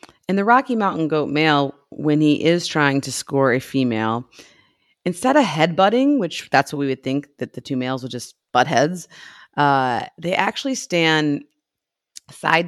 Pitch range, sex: 135-160 Hz, female